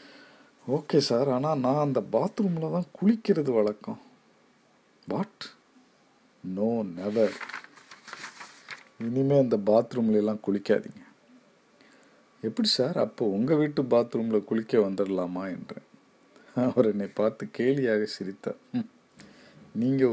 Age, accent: 50-69, native